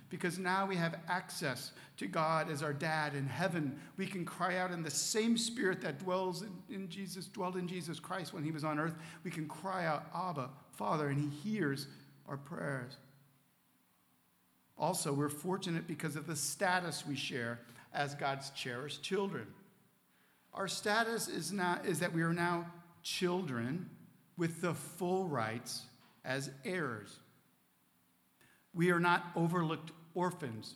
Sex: male